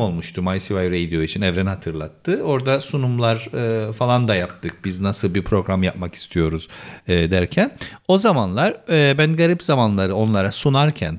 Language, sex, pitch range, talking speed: Turkish, male, 100-155 Hz, 135 wpm